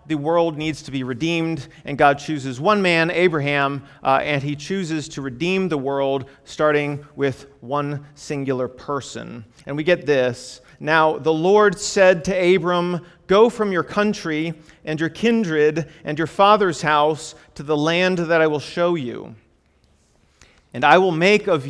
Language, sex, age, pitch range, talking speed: English, male, 40-59, 150-200 Hz, 165 wpm